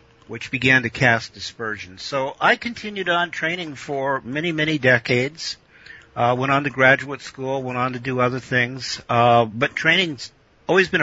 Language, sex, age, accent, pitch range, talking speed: English, male, 50-69, American, 110-135 Hz, 170 wpm